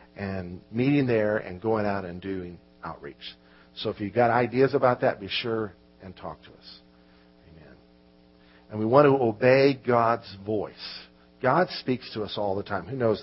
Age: 50-69